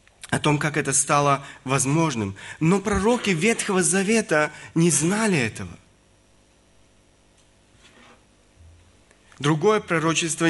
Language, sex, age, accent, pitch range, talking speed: Russian, male, 30-49, native, 150-195 Hz, 85 wpm